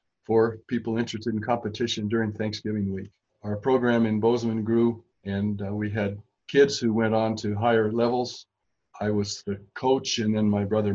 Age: 50-69